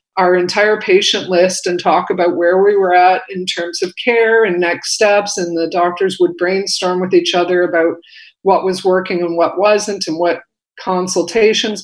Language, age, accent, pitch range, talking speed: English, 50-69, American, 175-200 Hz, 185 wpm